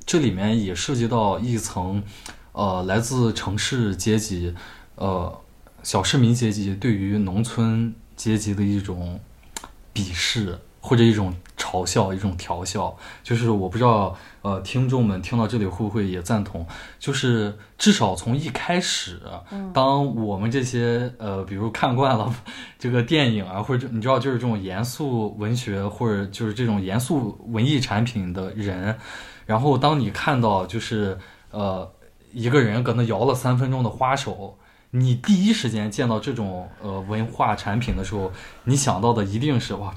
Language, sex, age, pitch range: Chinese, male, 20-39, 100-120 Hz